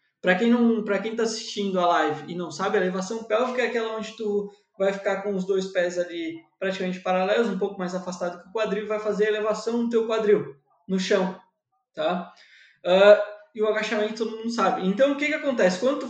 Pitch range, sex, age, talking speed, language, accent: 190-240 Hz, male, 20-39, 225 wpm, Portuguese, Brazilian